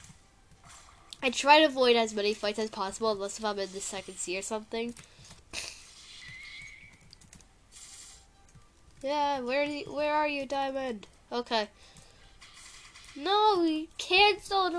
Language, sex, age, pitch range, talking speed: English, female, 10-29, 215-300 Hz, 120 wpm